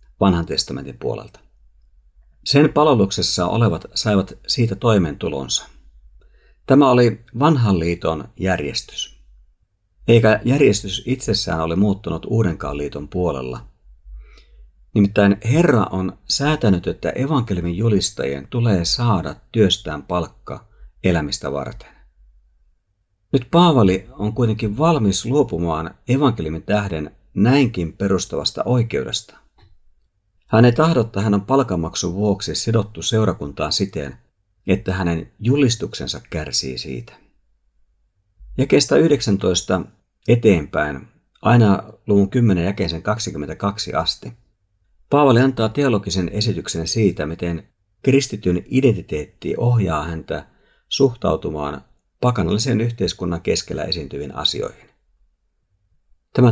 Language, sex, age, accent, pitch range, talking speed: Finnish, male, 50-69, native, 80-115 Hz, 95 wpm